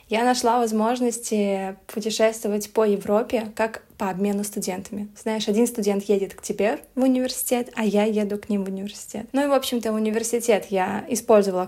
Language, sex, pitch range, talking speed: Russian, female, 205-240 Hz, 165 wpm